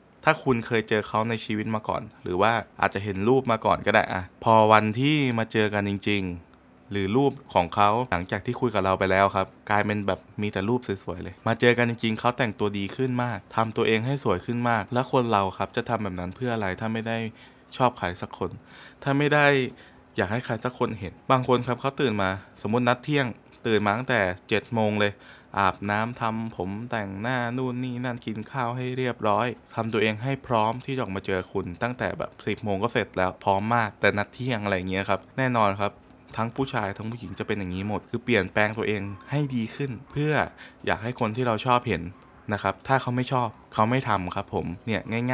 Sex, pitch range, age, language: male, 100-125 Hz, 20-39, Thai